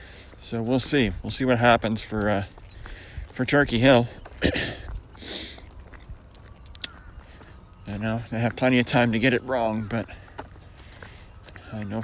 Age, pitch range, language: 40-59, 85-115 Hz, English